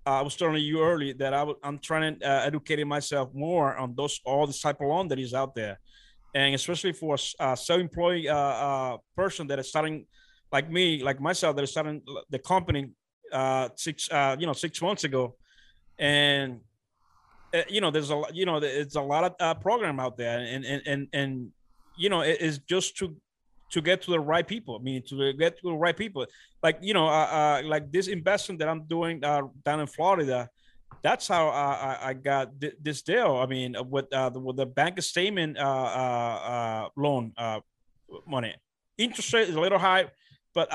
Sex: male